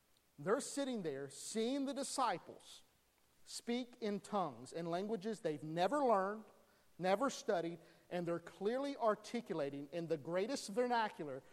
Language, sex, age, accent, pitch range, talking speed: English, male, 50-69, American, 170-270 Hz, 125 wpm